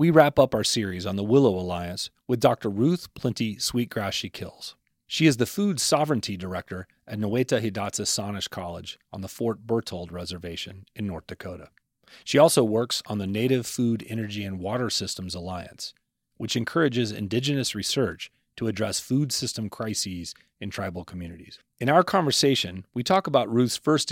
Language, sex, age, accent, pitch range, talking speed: English, male, 30-49, American, 95-125 Hz, 160 wpm